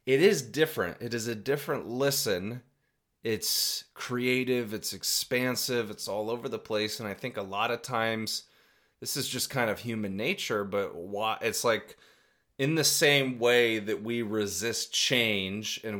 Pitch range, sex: 100-120 Hz, male